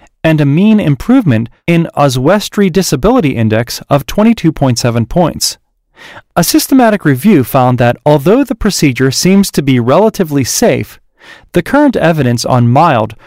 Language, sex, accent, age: English, male, American, 30-49